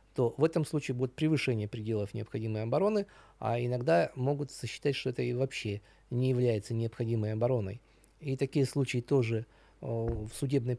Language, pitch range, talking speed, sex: Russian, 120-155 Hz, 155 wpm, male